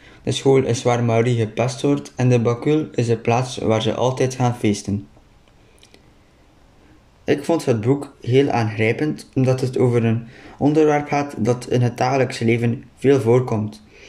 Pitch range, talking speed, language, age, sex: 110-135 Hz, 160 wpm, Dutch, 20-39, male